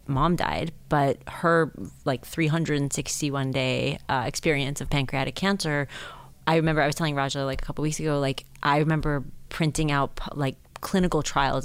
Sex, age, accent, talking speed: female, 30-49, American, 160 wpm